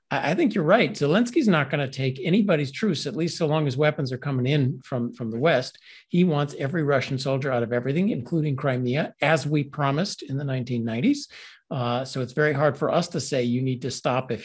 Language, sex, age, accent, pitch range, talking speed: English, male, 50-69, American, 125-165 Hz, 220 wpm